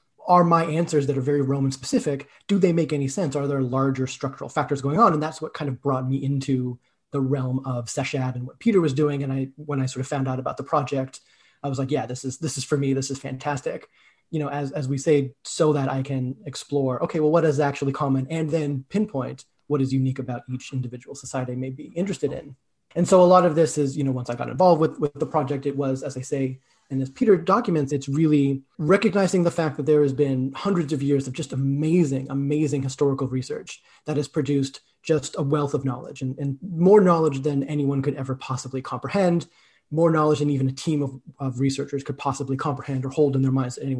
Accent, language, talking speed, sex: American, English, 235 wpm, male